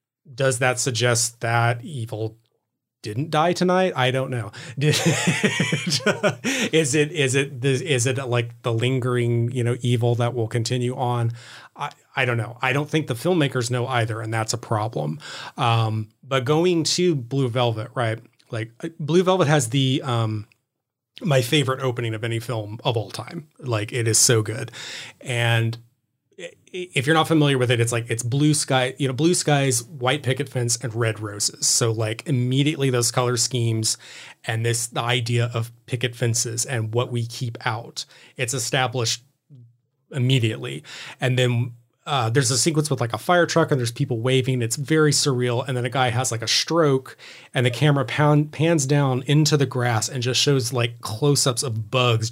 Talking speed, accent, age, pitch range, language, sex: 180 wpm, American, 30-49, 120-140 Hz, English, male